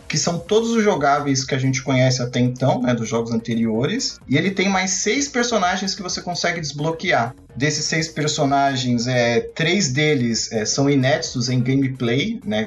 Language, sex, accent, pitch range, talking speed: Portuguese, male, Brazilian, 125-170 Hz, 165 wpm